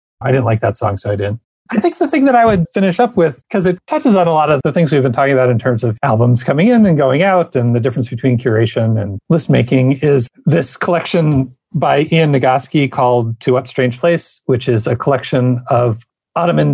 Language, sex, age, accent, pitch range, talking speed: English, male, 40-59, American, 120-160 Hz, 235 wpm